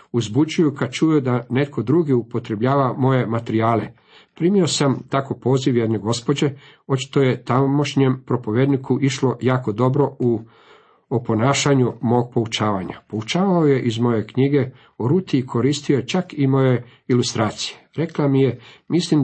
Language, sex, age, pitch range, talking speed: Croatian, male, 50-69, 115-140 Hz, 130 wpm